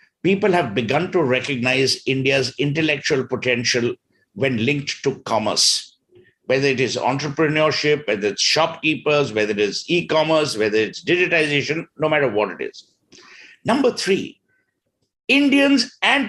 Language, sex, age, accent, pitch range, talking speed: English, male, 60-79, Indian, 130-160 Hz, 130 wpm